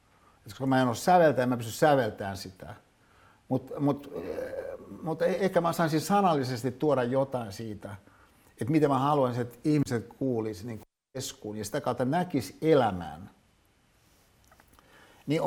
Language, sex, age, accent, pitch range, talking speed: Finnish, male, 60-79, native, 105-150 Hz, 125 wpm